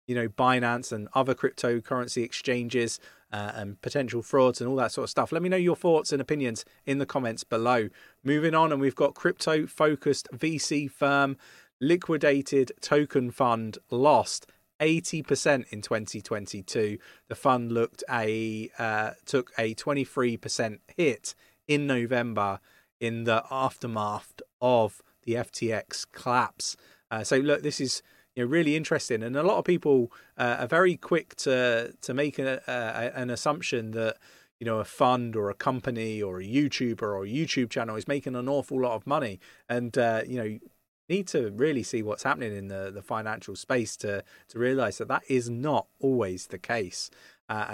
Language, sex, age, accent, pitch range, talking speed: English, male, 30-49, British, 115-140 Hz, 165 wpm